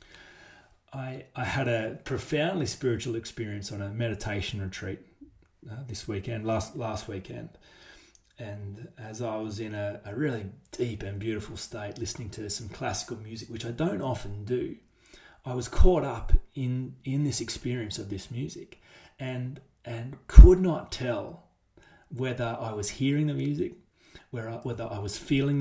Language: English